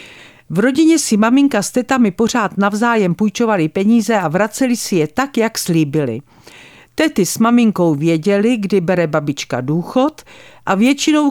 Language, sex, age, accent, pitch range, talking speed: Czech, female, 50-69, native, 160-235 Hz, 145 wpm